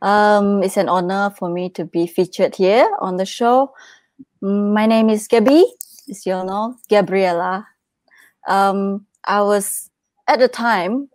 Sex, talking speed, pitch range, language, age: female, 145 wpm, 185-210 Hz, English, 20-39